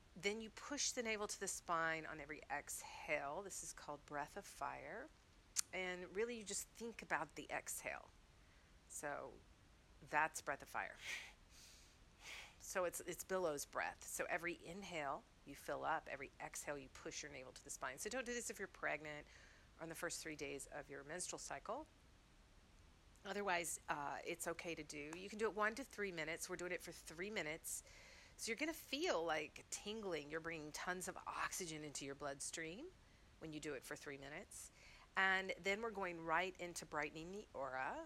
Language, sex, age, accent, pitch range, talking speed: English, female, 40-59, American, 150-185 Hz, 185 wpm